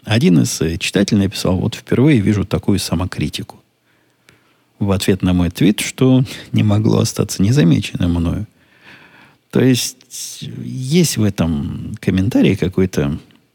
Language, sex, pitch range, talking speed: Russian, male, 85-105 Hz, 120 wpm